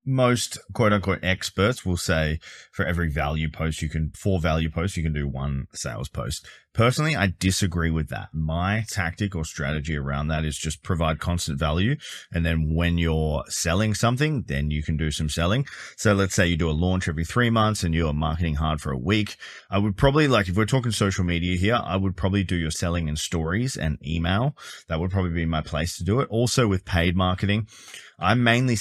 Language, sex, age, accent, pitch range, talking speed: English, male, 20-39, Australian, 80-100 Hz, 210 wpm